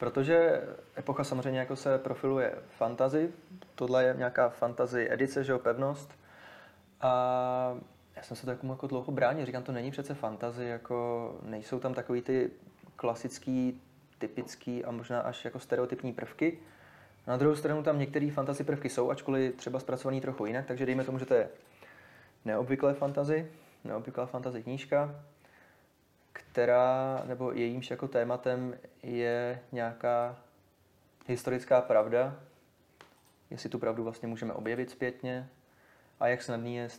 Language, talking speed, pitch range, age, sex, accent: Czech, 140 wpm, 115-130 Hz, 20-39, male, native